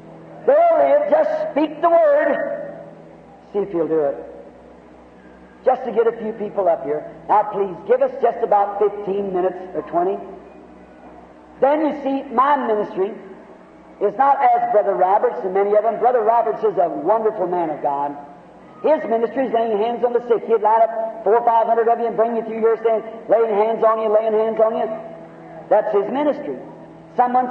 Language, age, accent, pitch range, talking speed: English, 50-69, American, 215-290 Hz, 185 wpm